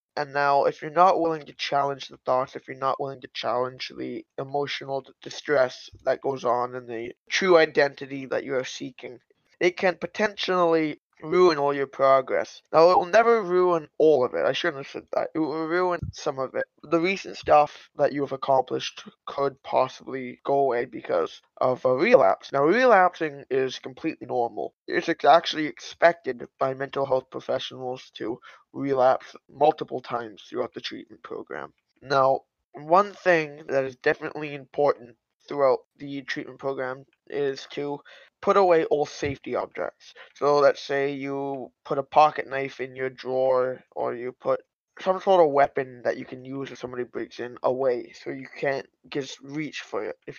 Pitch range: 130-160 Hz